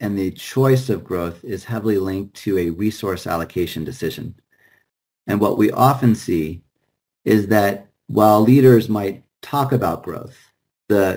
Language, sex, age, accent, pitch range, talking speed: English, male, 40-59, American, 95-120 Hz, 145 wpm